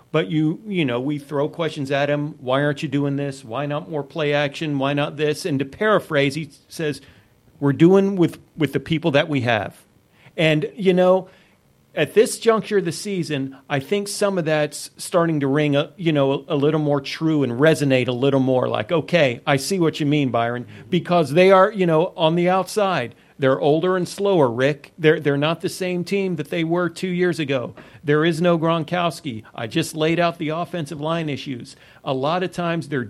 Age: 40-59